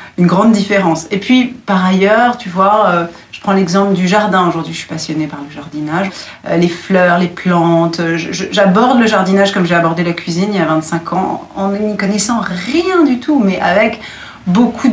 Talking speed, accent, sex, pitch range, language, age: 205 wpm, French, female, 165-210 Hz, French, 40-59